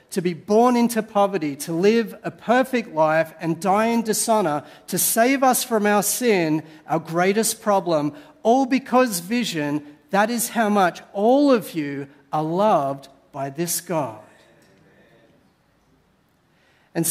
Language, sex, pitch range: English, male, 150-205 Hz